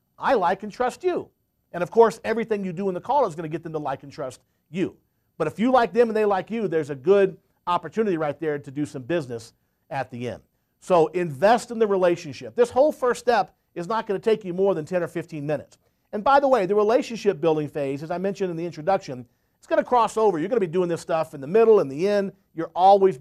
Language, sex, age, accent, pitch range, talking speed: English, male, 50-69, American, 150-200 Hz, 260 wpm